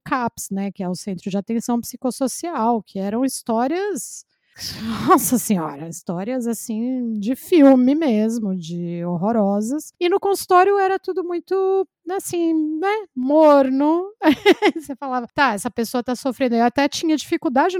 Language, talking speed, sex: Portuguese, 140 wpm, female